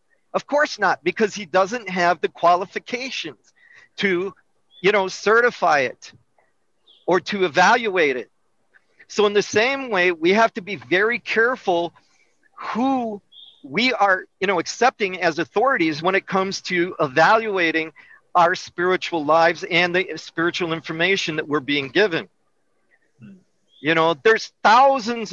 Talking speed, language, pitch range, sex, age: 135 wpm, English, 175-220 Hz, male, 50-69